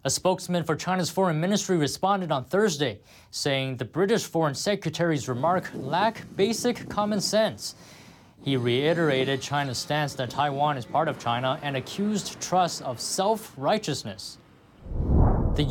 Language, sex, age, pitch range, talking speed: English, male, 20-39, 125-185 Hz, 135 wpm